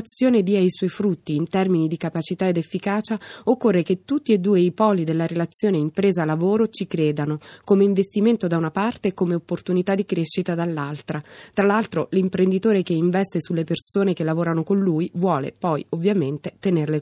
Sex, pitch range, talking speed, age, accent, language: female, 165-200 Hz, 170 wpm, 20-39, native, Italian